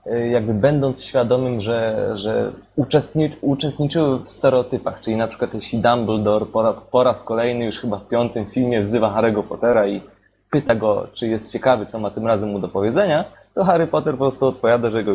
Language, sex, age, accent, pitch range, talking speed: Polish, male, 20-39, native, 110-140 Hz, 190 wpm